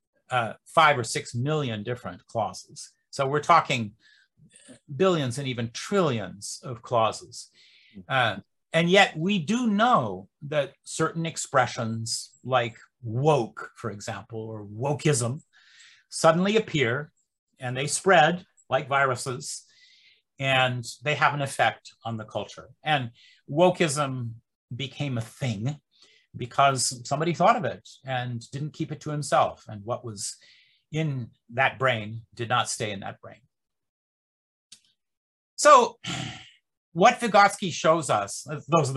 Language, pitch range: English, 115-165 Hz